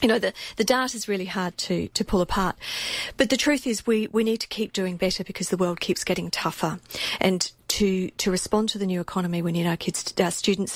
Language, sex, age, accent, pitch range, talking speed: English, female, 40-59, Australian, 175-210 Hz, 240 wpm